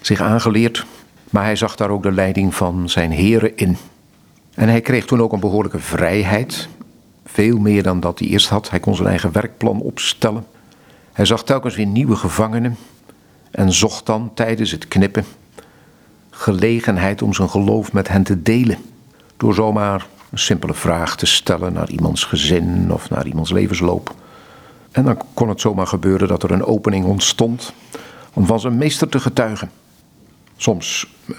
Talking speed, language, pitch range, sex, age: 165 wpm, Dutch, 95-115 Hz, male, 50-69